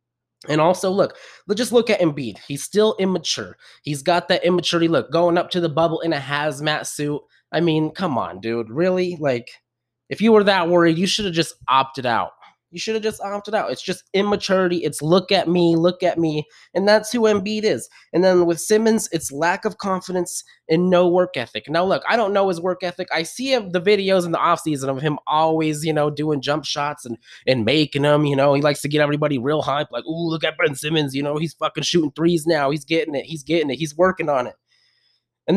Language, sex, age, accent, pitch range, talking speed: English, male, 20-39, American, 145-180 Hz, 230 wpm